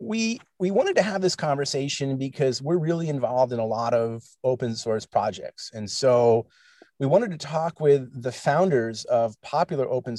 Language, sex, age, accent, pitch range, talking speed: English, male, 30-49, American, 115-140 Hz, 175 wpm